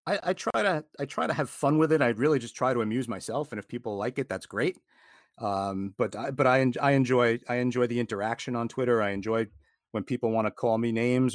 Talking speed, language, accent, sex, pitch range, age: 260 wpm, English, American, male, 105-125 Hz, 40-59